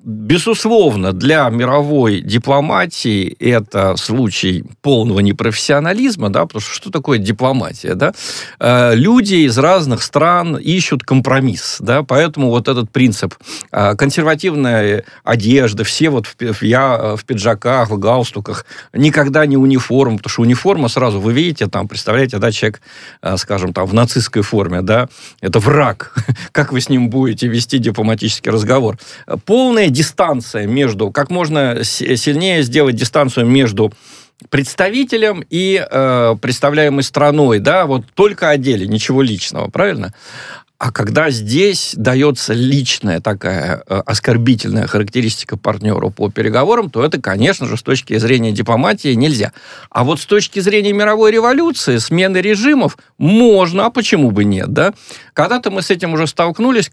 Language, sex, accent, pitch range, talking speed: Russian, male, native, 110-150 Hz, 135 wpm